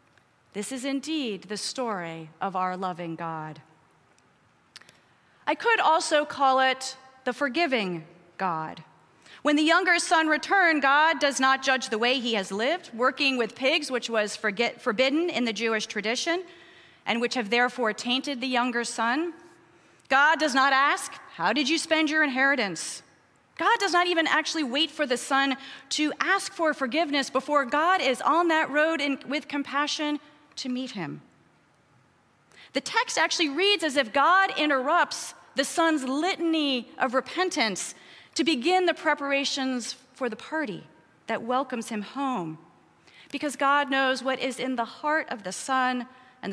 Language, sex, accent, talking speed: English, female, American, 155 wpm